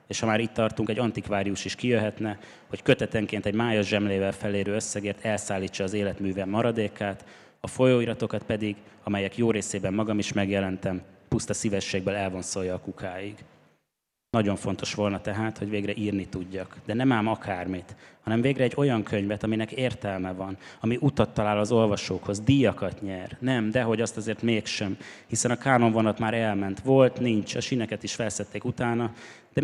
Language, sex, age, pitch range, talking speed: Hungarian, male, 20-39, 100-115 Hz, 160 wpm